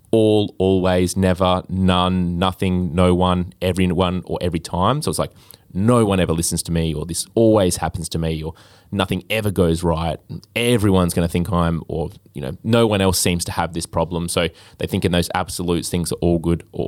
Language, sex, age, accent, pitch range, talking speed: English, male, 20-39, Australian, 85-100 Hz, 210 wpm